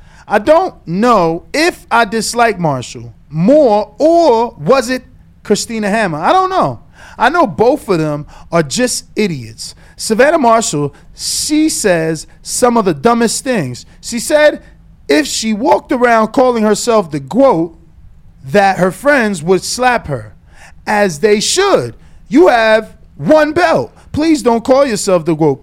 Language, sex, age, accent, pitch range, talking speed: English, male, 30-49, American, 175-260 Hz, 145 wpm